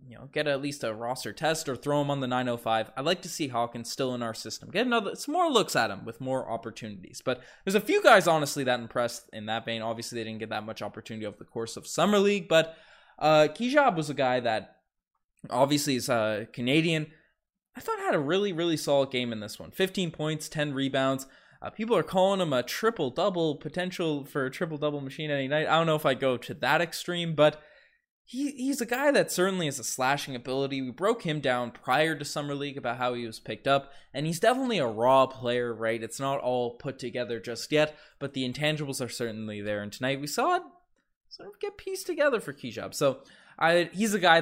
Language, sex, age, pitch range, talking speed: English, male, 20-39, 120-160 Hz, 225 wpm